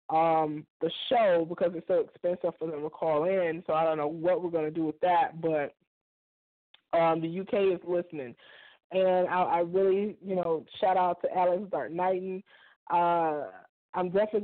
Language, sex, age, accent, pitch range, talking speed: English, female, 20-39, American, 165-190 Hz, 185 wpm